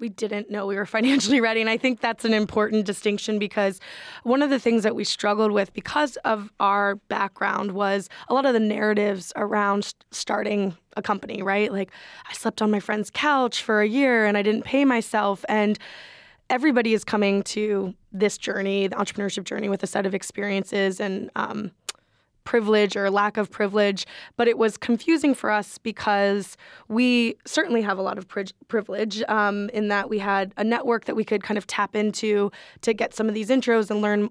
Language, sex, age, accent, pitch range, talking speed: English, female, 10-29, American, 205-225 Hz, 195 wpm